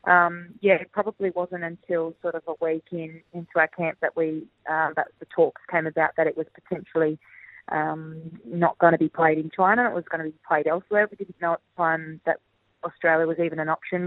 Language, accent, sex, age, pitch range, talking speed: English, Australian, female, 20-39, 160-180 Hz, 225 wpm